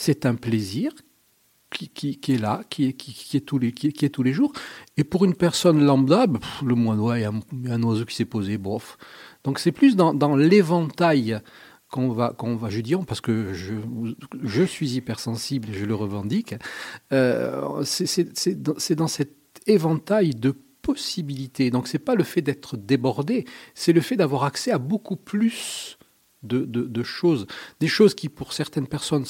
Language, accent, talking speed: French, French, 200 wpm